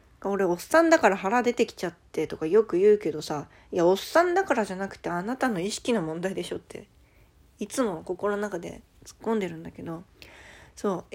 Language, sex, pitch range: Japanese, female, 185-250 Hz